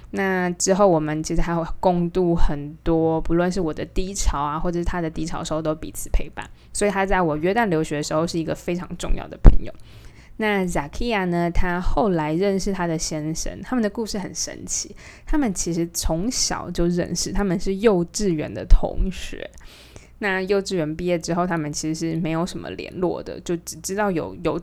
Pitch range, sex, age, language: 165-190 Hz, female, 20-39, Chinese